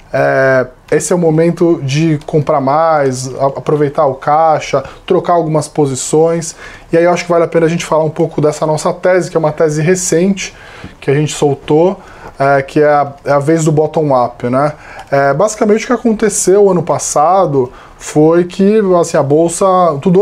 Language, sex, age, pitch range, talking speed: English, male, 10-29, 140-170 Hz, 185 wpm